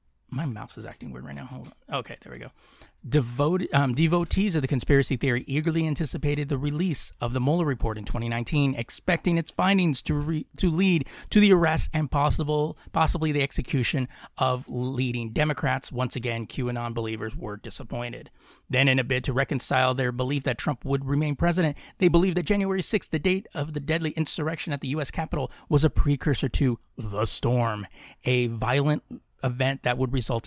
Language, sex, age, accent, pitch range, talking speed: English, male, 30-49, American, 120-155 Hz, 185 wpm